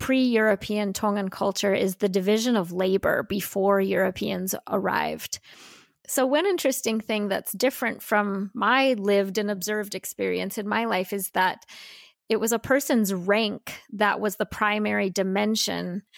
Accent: American